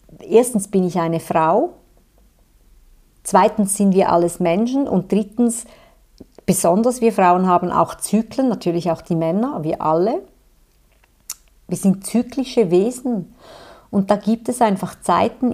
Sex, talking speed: female, 130 wpm